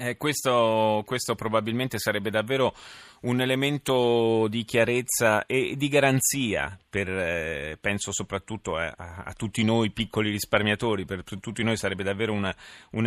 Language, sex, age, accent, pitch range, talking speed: Italian, male, 30-49, native, 95-115 Hz, 140 wpm